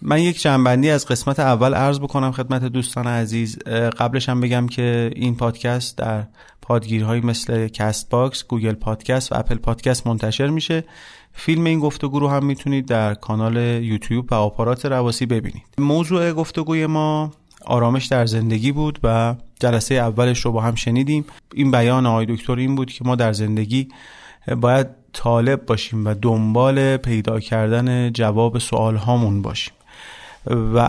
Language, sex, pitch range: Persian, male, 110-130 Hz